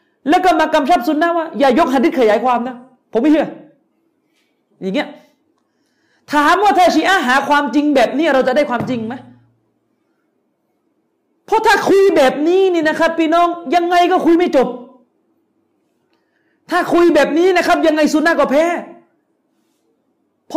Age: 40-59